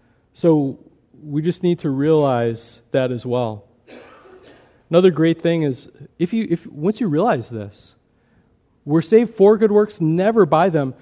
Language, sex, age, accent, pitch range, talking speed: English, male, 40-59, American, 140-205 Hz, 150 wpm